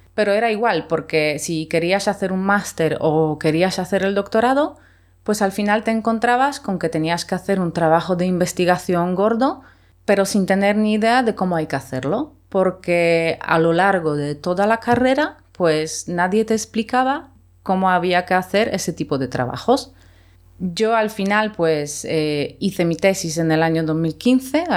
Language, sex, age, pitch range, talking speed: Spanish, female, 30-49, 160-205 Hz, 170 wpm